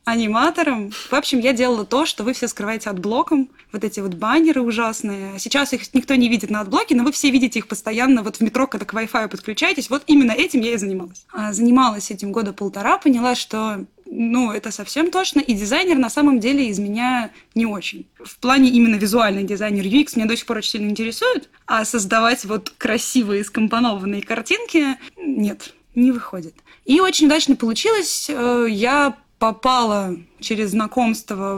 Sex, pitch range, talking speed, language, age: female, 215-270 Hz, 175 wpm, Russian, 20-39